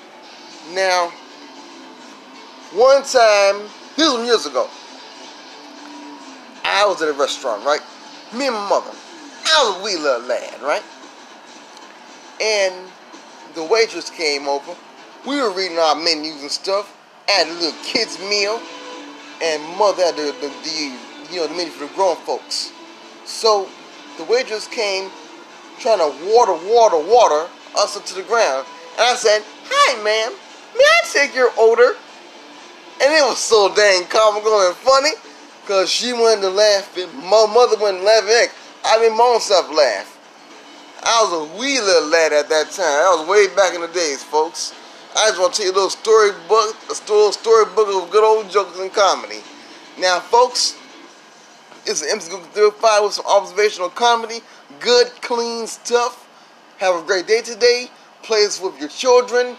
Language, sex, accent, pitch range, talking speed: English, male, American, 190-240 Hz, 165 wpm